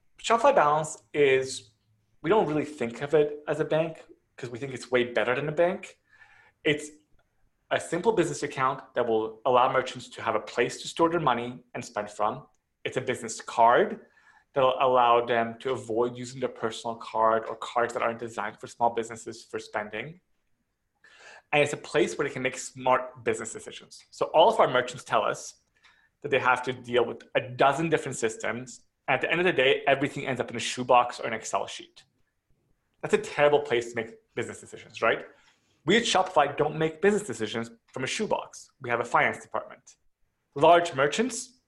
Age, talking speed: 30-49, 195 wpm